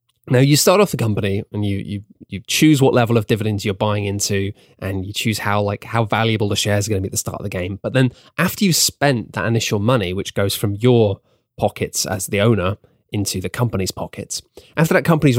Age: 20-39